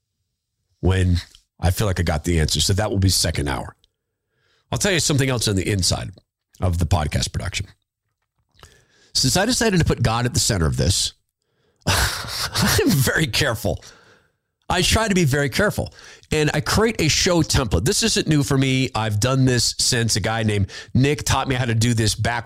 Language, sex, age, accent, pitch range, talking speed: English, male, 40-59, American, 100-140 Hz, 190 wpm